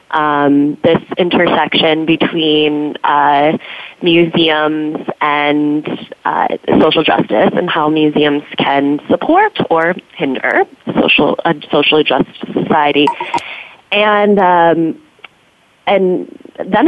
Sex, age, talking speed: female, 20-39, 95 wpm